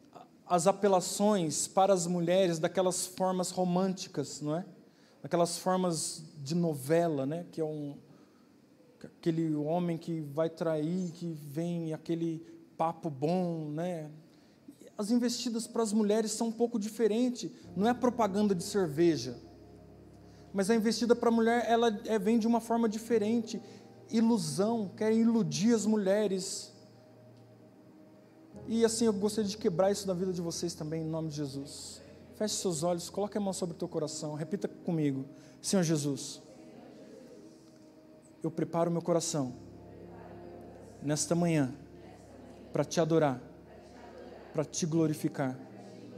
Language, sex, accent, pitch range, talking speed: Portuguese, male, Brazilian, 160-215 Hz, 135 wpm